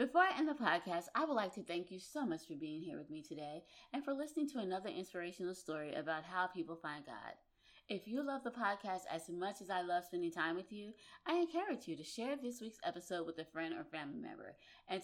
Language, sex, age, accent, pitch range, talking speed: English, female, 20-39, American, 165-230 Hz, 240 wpm